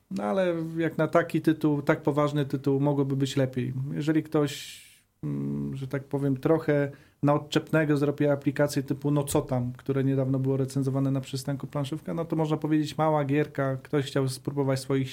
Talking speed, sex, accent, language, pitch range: 170 wpm, male, native, Polish, 135-155 Hz